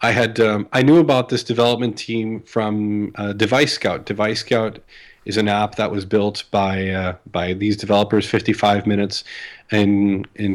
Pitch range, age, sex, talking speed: 100-115 Hz, 30-49, male, 170 wpm